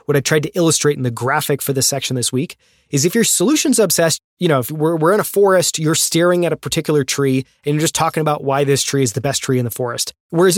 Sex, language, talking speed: male, English, 265 wpm